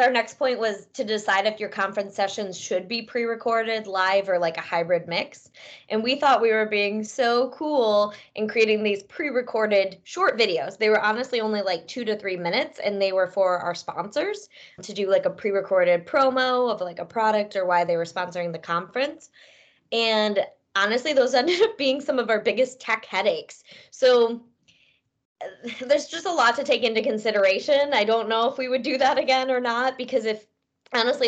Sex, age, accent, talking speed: female, 20-39, American, 190 wpm